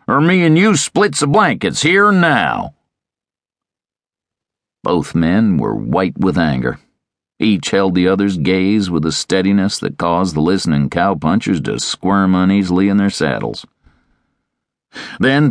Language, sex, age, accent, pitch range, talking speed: English, male, 50-69, American, 95-140 Hz, 140 wpm